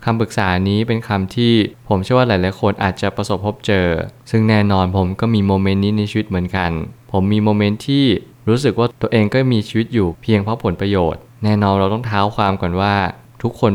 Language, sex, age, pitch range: Thai, male, 20-39, 95-115 Hz